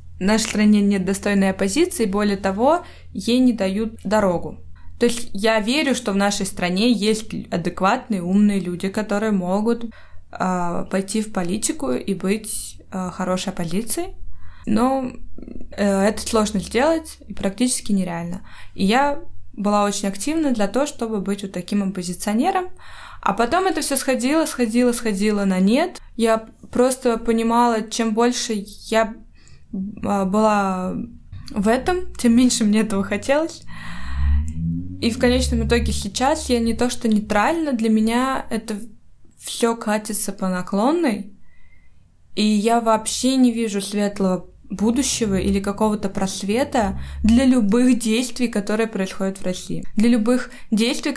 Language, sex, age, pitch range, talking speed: Russian, female, 20-39, 195-240 Hz, 135 wpm